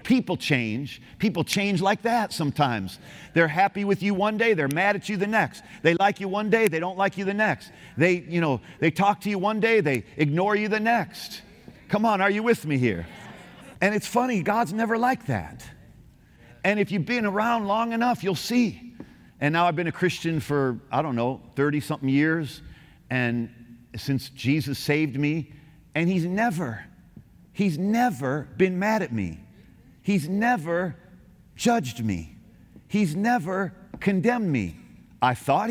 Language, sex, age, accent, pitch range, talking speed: English, male, 50-69, American, 120-195 Hz, 175 wpm